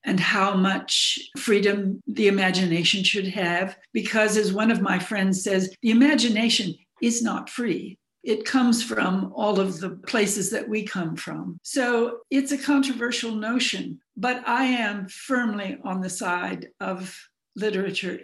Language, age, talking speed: English, 60-79, 150 wpm